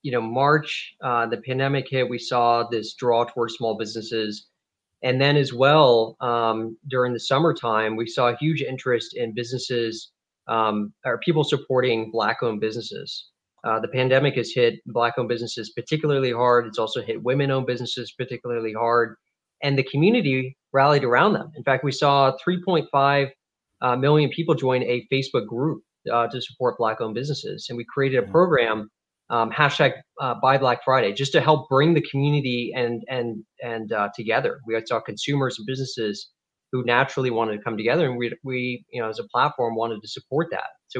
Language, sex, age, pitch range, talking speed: English, male, 20-39, 115-140 Hz, 180 wpm